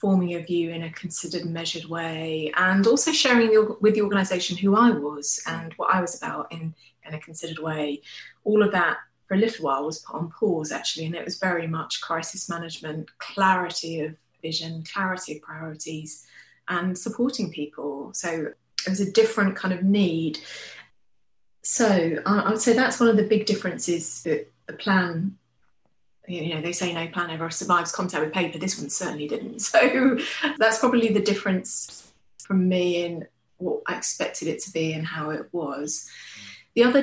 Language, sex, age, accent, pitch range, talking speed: English, female, 20-39, British, 165-205 Hz, 185 wpm